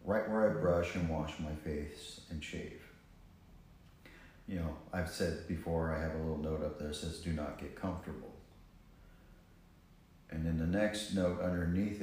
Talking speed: 170 wpm